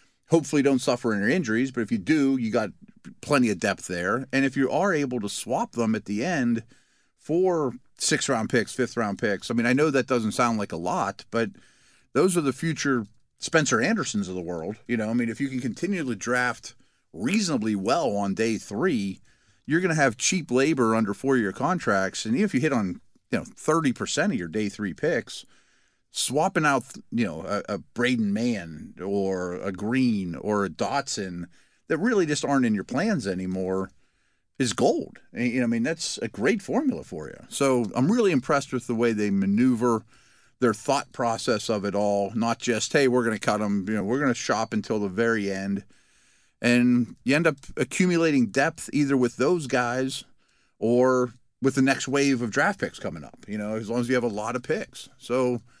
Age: 40-59